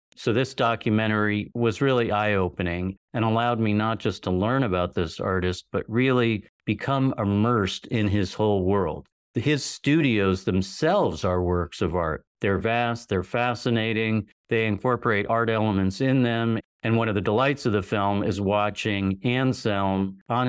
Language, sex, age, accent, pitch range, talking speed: English, male, 50-69, American, 95-120 Hz, 155 wpm